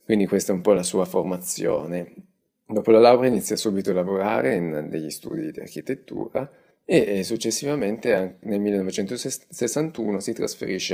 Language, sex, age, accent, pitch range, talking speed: Italian, male, 30-49, native, 85-105 Hz, 145 wpm